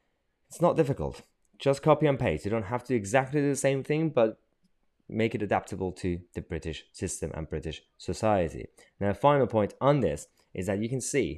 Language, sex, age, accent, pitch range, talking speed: English, male, 20-39, British, 80-105 Hz, 200 wpm